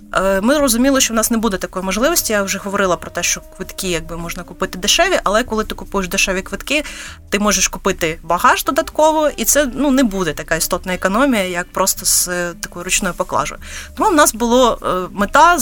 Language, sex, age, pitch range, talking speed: Ukrainian, female, 30-49, 185-255 Hz, 190 wpm